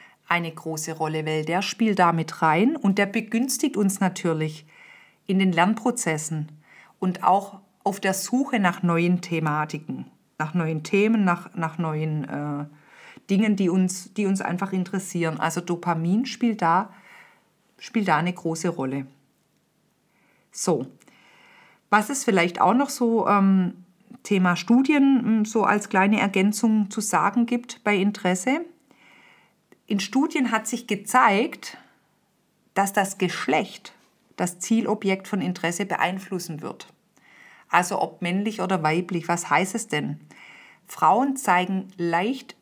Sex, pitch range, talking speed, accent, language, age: female, 170-215 Hz, 130 wpm, German, German, 50-69